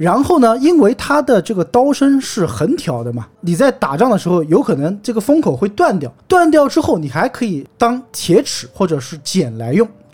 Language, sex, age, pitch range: Chinese, male, 20-39, 155-250 Hz